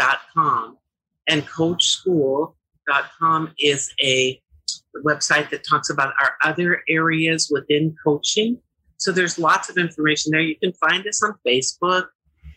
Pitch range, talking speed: 135-170 Hz, 125 wpm